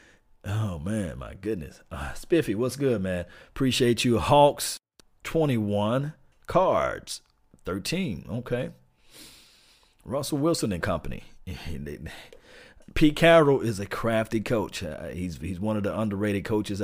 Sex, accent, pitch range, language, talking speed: male, American, 85-125 Hz, English, 120 wpm